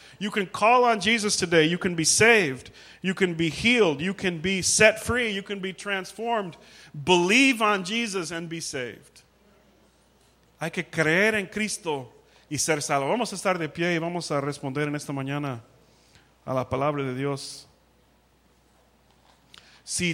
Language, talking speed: English, 165 wpm